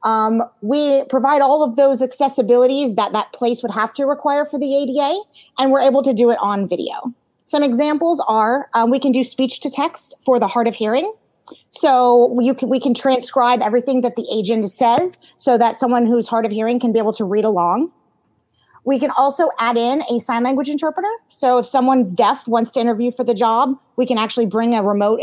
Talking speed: 205 wpm